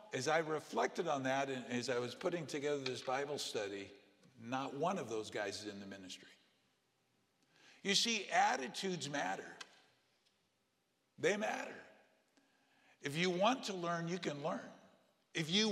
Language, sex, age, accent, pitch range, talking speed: English, male, 50-69, American, 145-180 Hz, 145 wpm